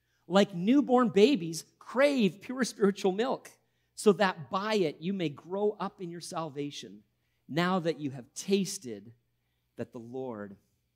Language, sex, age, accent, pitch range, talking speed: English, male, 40-59, American, 145-215 Hz, 140 wpm